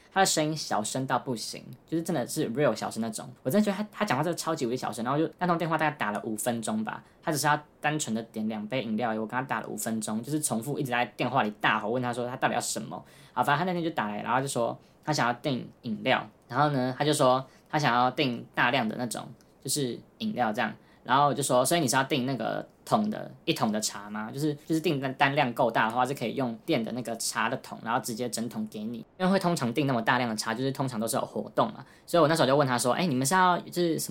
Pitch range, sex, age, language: 115-155 Hz, female, 10-29, Chinese